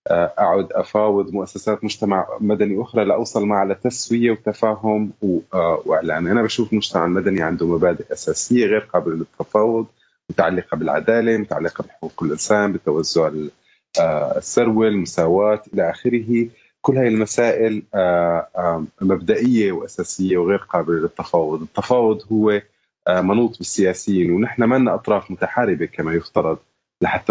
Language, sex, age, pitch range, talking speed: Arabic, male, 30-49, 90-110 Hz, 110 wpm